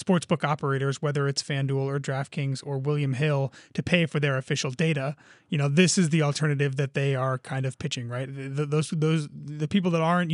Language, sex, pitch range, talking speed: English, male, 145-175 Hz, 215 wpm